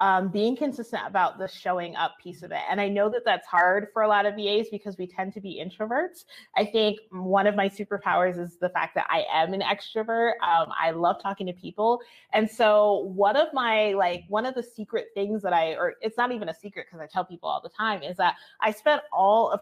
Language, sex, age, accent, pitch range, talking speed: English, female, 30-49, American, 180-220 Hz, 240 wpm